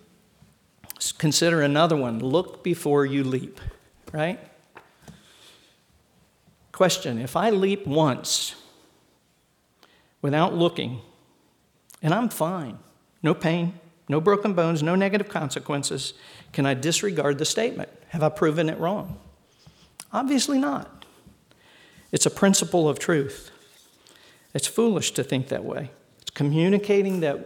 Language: English